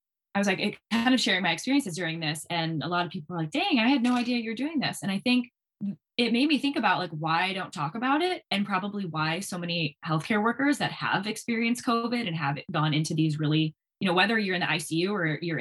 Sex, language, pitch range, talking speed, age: female, English, 165-215 Hz, 255 wpm, 20-39